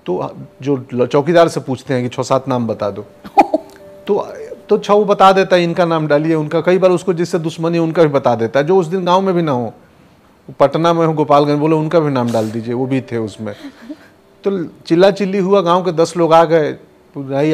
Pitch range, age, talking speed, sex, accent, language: 125-180 Hz, 40-59, 220 wpm, male, native, Hindi